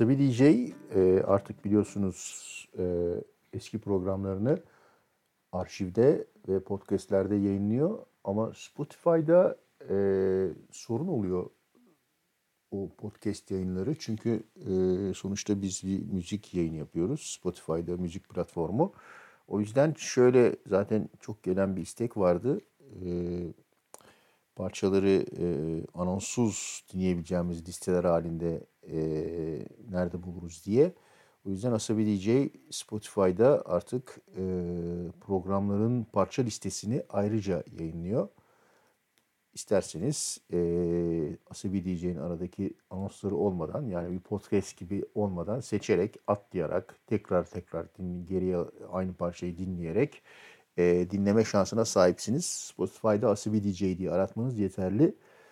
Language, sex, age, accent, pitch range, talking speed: Turkish, male, 60-79, native, 90-105 Hz, 100 wpm